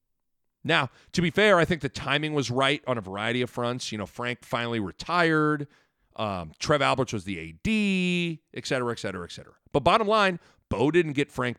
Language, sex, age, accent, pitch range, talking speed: English, male, 40-59, American, 110-150 Hz, 200 wpm